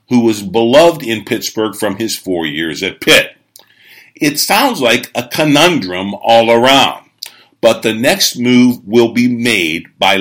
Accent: American